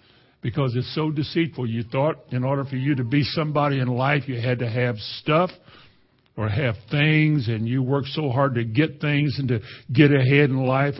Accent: American